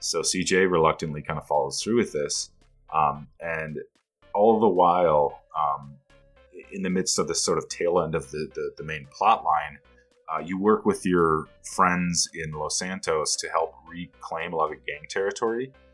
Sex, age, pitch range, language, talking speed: male, 30-49, 80-130 Hz, English, 180 wpm